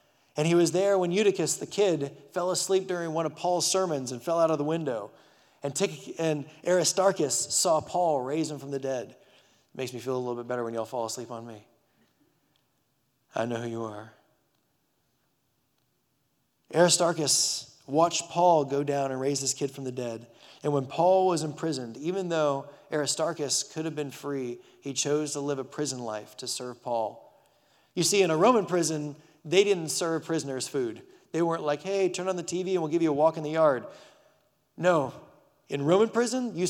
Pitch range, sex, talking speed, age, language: 135-170 Hz, male, 190 wpm, 30-49, English